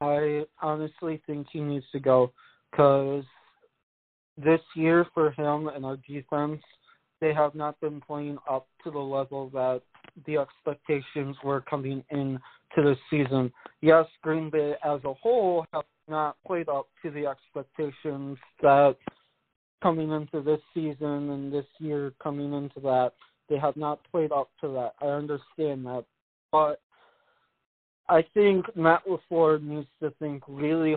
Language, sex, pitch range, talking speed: English, male, 140-155 Hz, 145 wpm